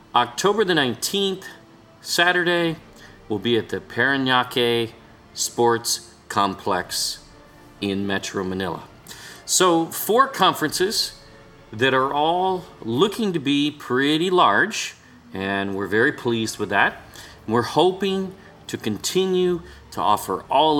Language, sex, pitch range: English, male, 105-145 Hz